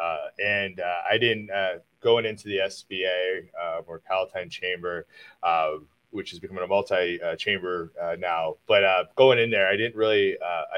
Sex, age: male, 30-49